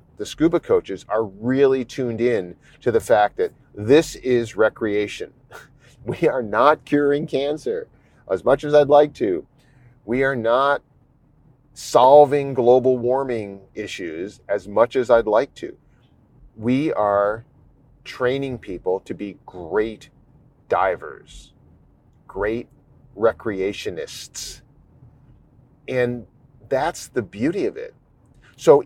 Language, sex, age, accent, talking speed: English, male, 40-59, American, 115 wpm